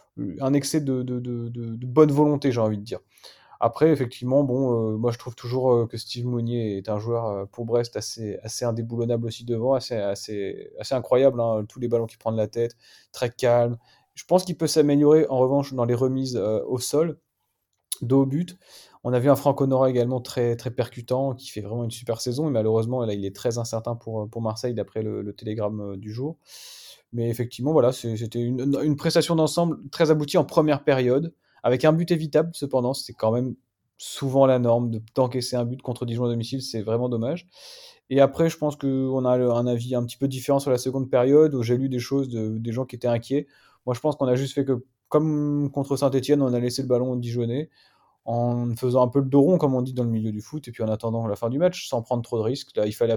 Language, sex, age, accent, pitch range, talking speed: French, male, 20-39, French, 115-140 Hz, 230 wpm